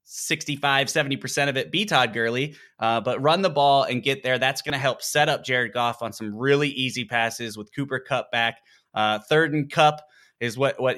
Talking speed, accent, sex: 215 wpm, American, male